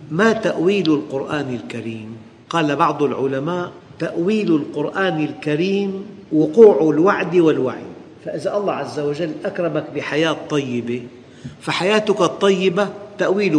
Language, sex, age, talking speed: Arabic, male, 50-69, 100 wpm